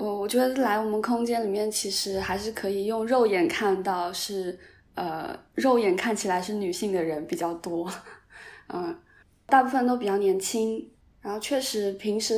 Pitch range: 185-220 Hz